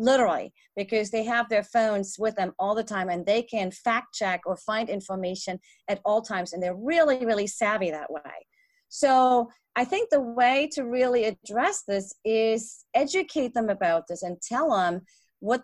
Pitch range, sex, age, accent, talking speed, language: 200-245 Hz, female, 40-59, American, 180 wpm, English